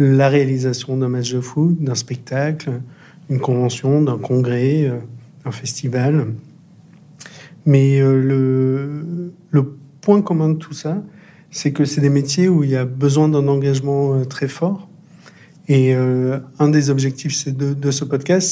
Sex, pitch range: male, 130-160 Hz